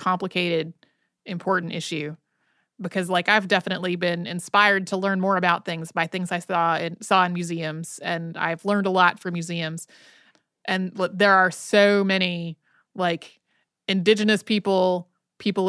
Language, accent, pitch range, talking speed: English, American, 175-205 Hz, 150 wpm